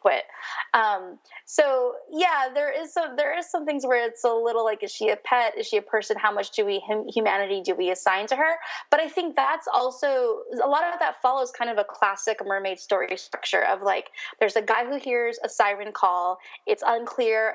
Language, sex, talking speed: English, female, 220 wpm